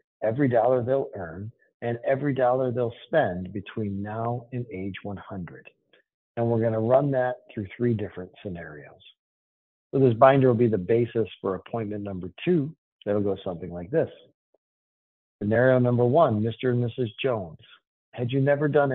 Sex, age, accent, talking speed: male, 50-69, American, 165 wpm